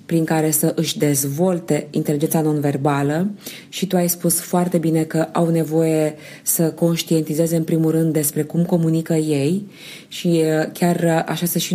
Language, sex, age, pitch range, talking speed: Romanian, female, 20-39, 155-180 Hz, 155 wpm